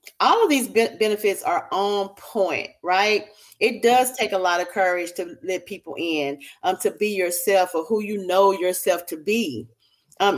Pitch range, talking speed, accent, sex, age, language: 190-250 Hz, 180 wpm, American, female, 40-59, English